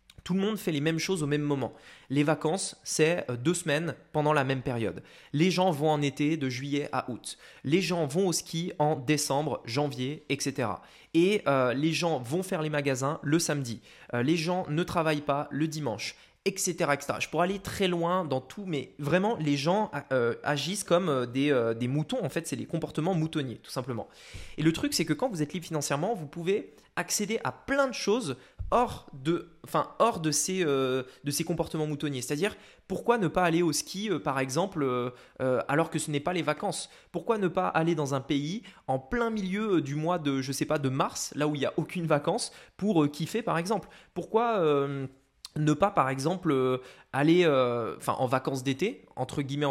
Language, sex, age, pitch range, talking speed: French, male, 20-39, 140-180 Hz, 210 wpm